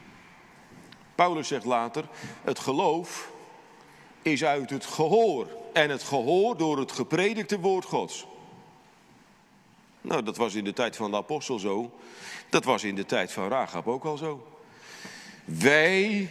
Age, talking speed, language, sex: 50-69, 140 wpm, Dutch, male